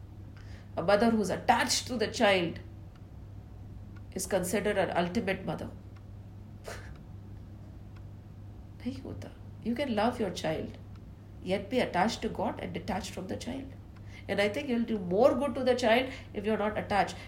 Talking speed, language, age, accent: 155 wpm, English, 50-69, Indian